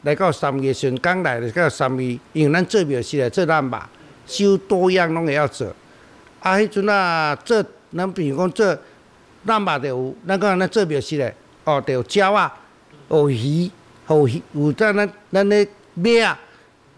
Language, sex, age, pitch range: Chinese, male, 60-79, 140-190 Hz